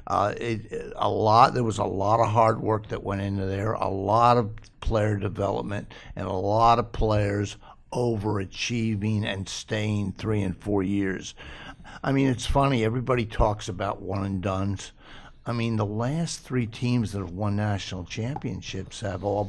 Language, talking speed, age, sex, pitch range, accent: English, 170 wpm, 60-79, male, 100-125 Hz, American